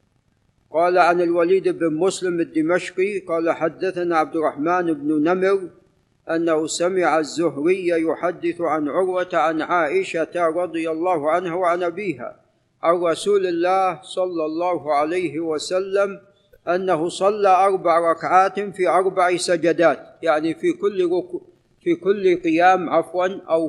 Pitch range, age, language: 165-190 Hz, 50-69, Arabic